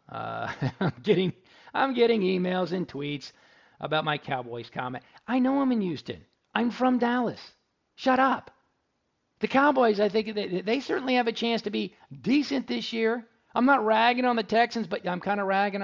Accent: American